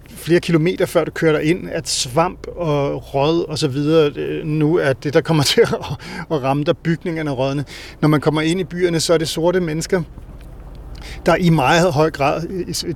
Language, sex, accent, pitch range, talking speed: Danish, male, native, 135-165 Hz, 195 wpm